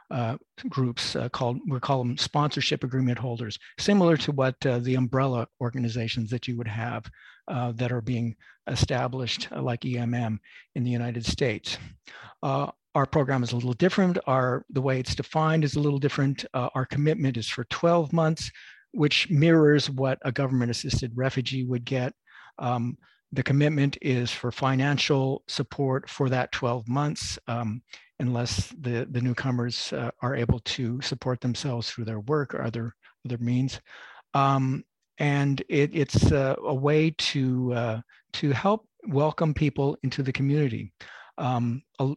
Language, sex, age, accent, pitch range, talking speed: English, male, 50-69, American, 120-145 Hz, 155 wpm